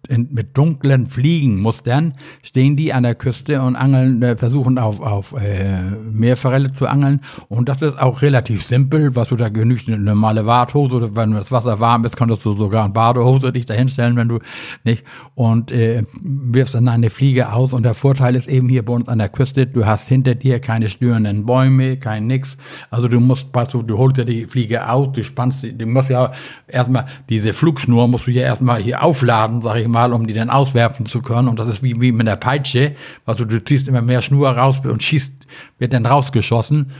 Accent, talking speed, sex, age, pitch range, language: German, 205 wpm, male, 60-79, 115-135 Hz, German